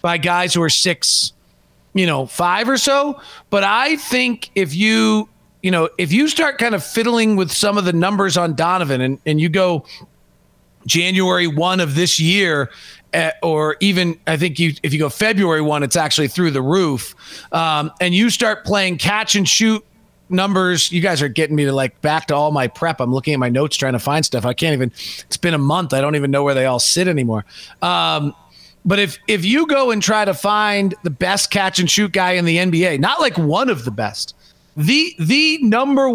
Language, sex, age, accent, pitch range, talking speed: English, male, 40-59, American, 155-210 Hz, 210 wpm